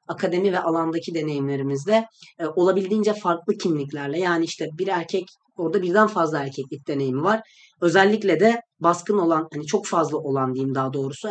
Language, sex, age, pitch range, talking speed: Turkish, female, 30-49, 150-190 Hz, 155 wpm